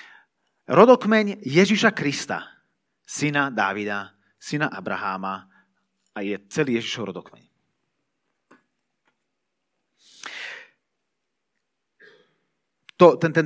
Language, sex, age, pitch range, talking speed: Slovak, male, 30-49, 130-195 Hz, 60 wpm